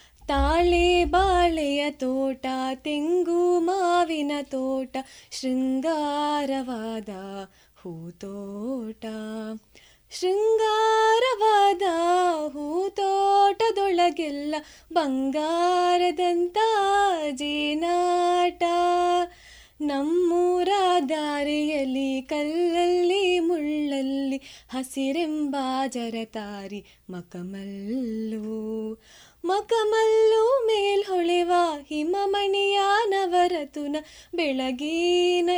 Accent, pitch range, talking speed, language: native, 270-360 Hz, 35 wpm, Kannada